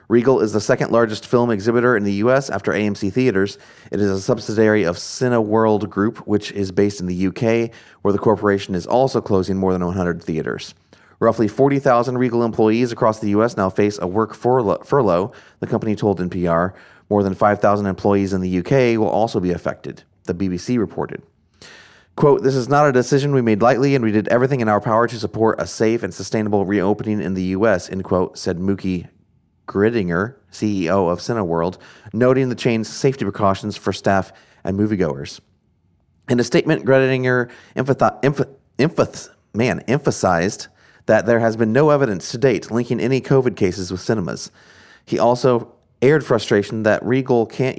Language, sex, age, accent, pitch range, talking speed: English, male, 30-49, American, 95-120 Hz, 170 wpm